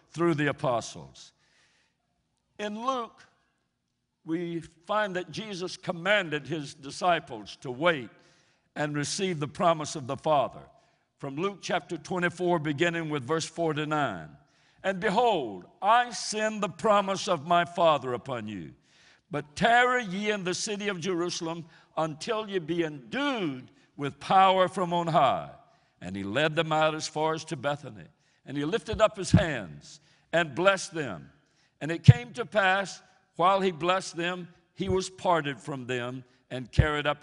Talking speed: 150 wpm